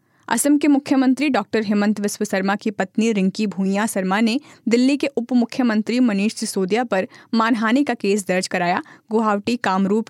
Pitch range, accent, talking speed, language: 195-240 Hz, native, 155 wpm, Hindi